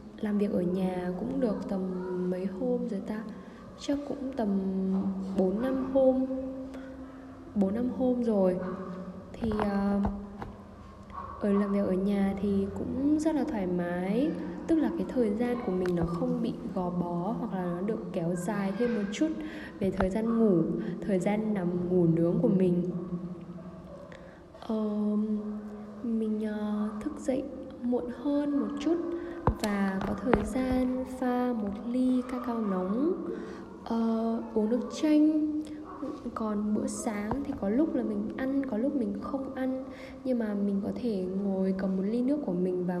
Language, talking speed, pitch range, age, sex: Vietnamese, 160 wpm, 190-255 Hz, 10-29, female